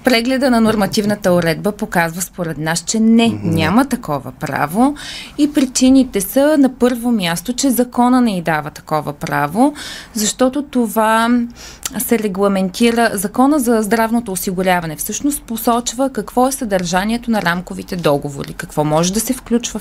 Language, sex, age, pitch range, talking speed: Bulgarian, female, 20-39, 180-245 Hz, 140 wpm